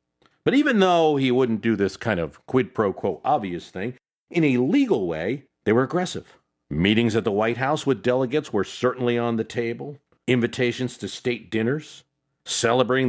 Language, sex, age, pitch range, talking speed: English, male, 50-69, 100-135 Hz, 175 wpm